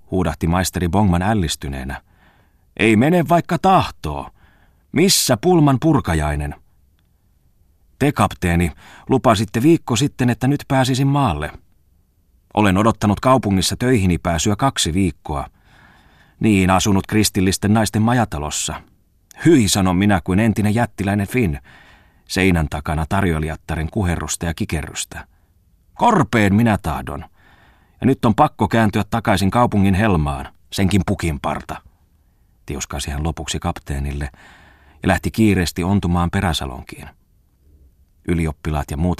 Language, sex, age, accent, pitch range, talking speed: Finnish, male, 30-49, native, 80-105 Hz, 105 wpm